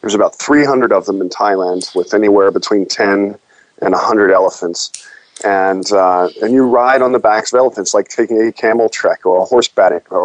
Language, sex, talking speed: English, male, 195 wpm